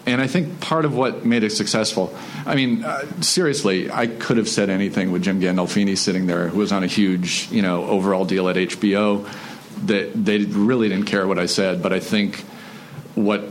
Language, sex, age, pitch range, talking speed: English, male, 40-59, 95-110 Hz, 205 wpm